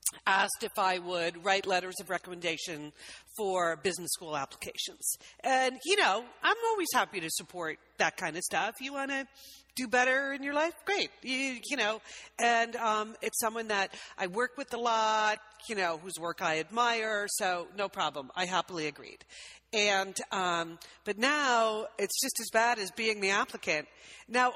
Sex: female